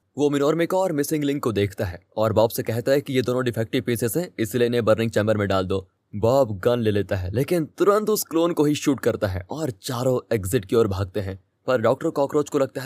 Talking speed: 230 wpm